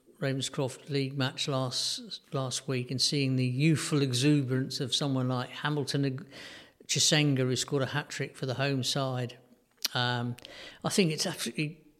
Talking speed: 150 wpm